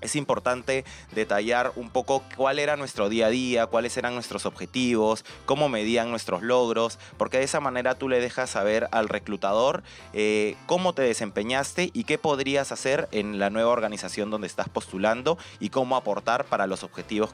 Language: Spanish